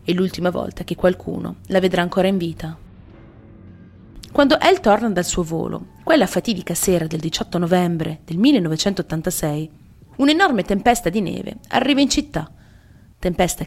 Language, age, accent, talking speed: Italian, 30-49, native, 140 wpm